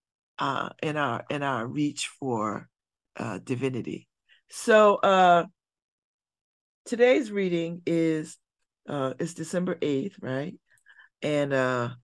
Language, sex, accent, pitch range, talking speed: English, female, American, 135-185 Hz, 100 wpm